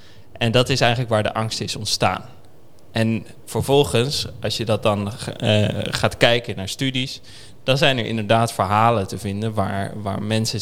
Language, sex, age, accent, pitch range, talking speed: Dutch, male, 20-39, Dutch, 105-120 Hz, 170 wpm